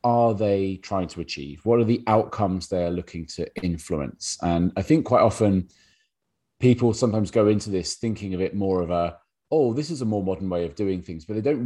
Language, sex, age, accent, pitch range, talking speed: English, male, 30-49, British, 85-110 Hz, 215 wpm